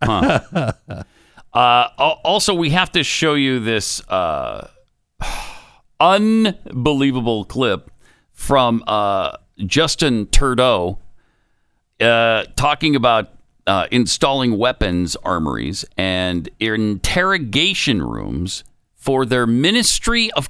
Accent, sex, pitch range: American, male, 95-140 Hz